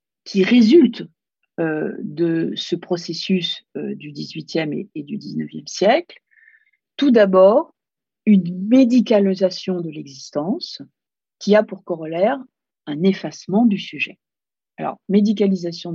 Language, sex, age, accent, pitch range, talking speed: French, female, 50-69, French, 170-215 Hz, 115 wpm